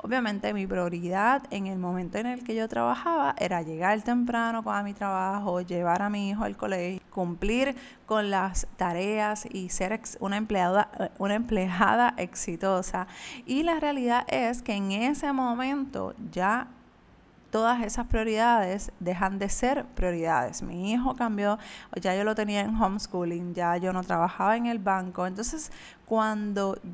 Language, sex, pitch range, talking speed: Spanish, female, 190-235 Hz, 155 wpm